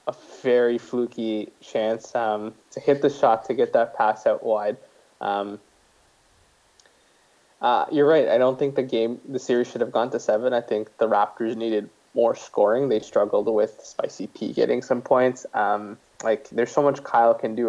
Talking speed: 185 wpm